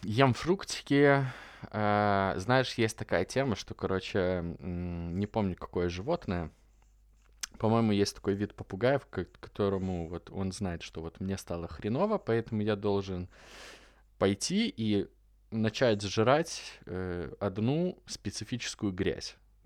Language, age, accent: Russian, 20-39, native